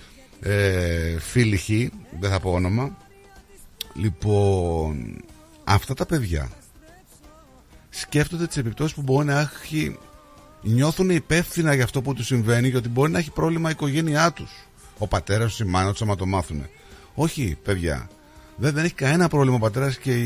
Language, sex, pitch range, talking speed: Greek, male, 90-145 Hz, 145 wpm